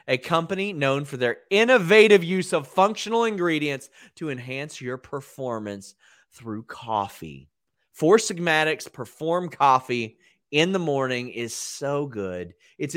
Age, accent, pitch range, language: 30-49, American, 125-175 Hz, English